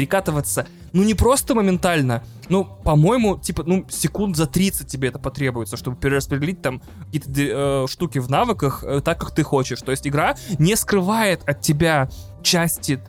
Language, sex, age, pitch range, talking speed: Russian, male, 20-39, 135-175 Hz, 160 wpm